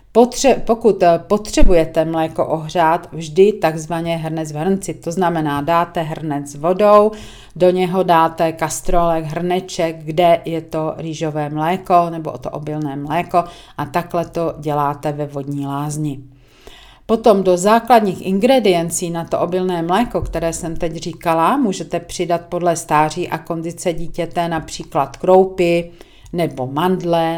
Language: Czech